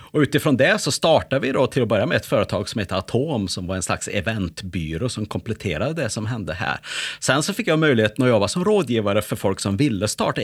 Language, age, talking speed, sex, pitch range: Swedish, 30-49, 235 wpm, male, 95-125 Hz